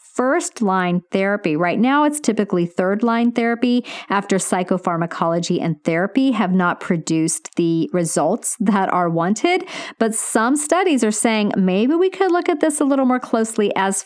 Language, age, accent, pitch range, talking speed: English, 40-59, American, 175-240 Hz, 160 wpm